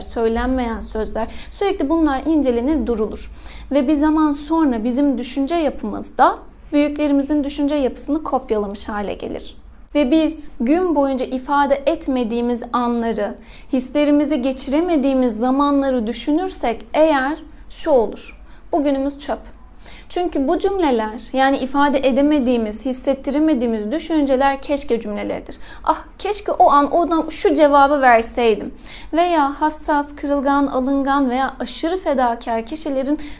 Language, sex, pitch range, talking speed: Turkish, female, 245-295 Hz, 110 wpm